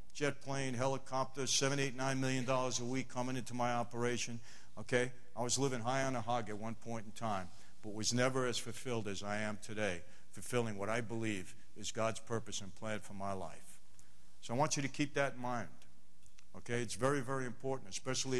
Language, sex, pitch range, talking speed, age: English, male, 115-140 Hz, 210 wpm, 60-79